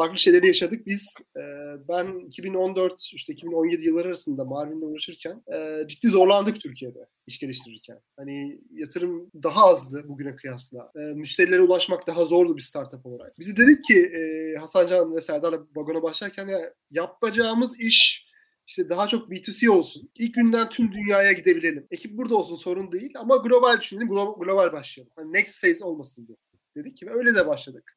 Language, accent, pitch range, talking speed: Turkish, native, 155-230 Hz, 165 wpm